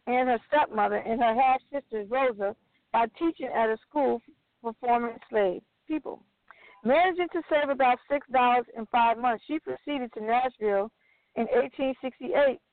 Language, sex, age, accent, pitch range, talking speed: English, female, 50-69, American, 230-280 Hz, 140 wpm